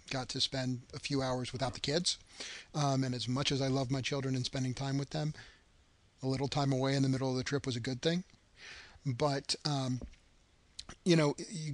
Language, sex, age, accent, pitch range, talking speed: English, male, 40-59, American, 115-140 Hz, 215 wpm